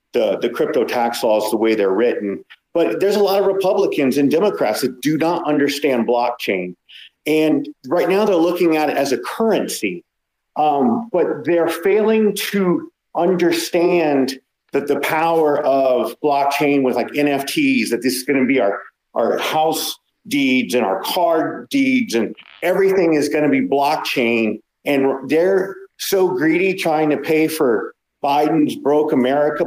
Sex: male